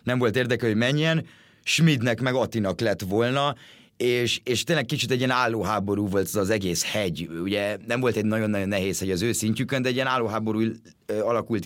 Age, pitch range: 30-49, 105-125 Hz